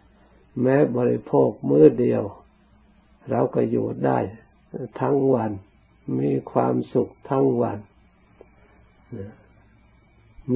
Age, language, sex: 60-79, Thai, male